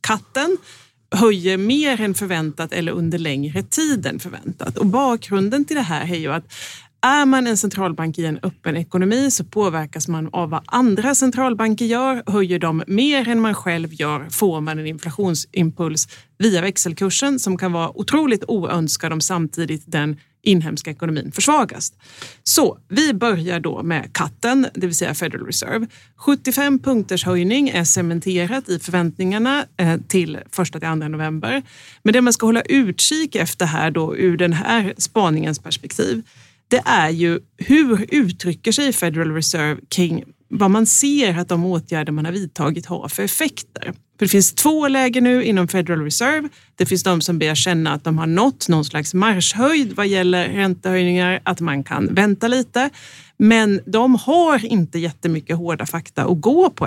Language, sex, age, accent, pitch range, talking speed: Swedish, female, 30-49, native, 165-230 Hz, 165 wpm